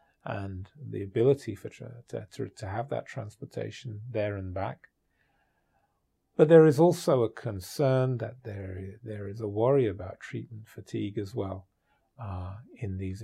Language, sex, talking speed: English, male, 150 wpm